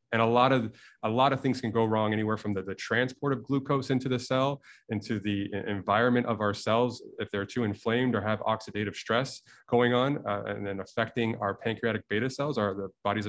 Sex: male